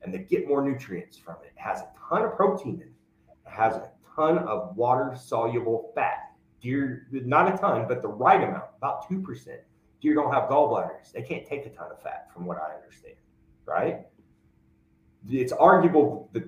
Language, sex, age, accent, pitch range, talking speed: English, male, 30-49, American, 105-135 Hz, 185 wpm